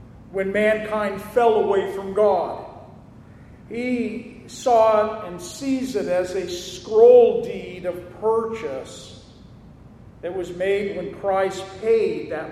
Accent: American